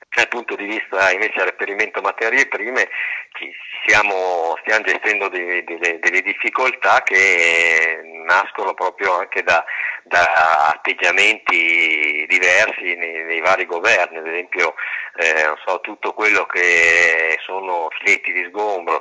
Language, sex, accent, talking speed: Italian, male, native, 125 wpm